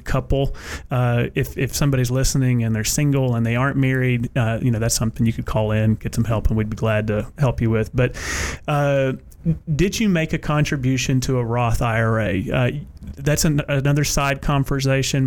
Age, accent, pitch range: 30-49, American, 115-140 Hz